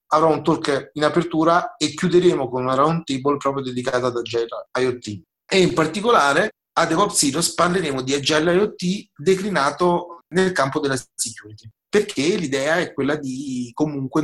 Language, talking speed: Italian, 150 wpm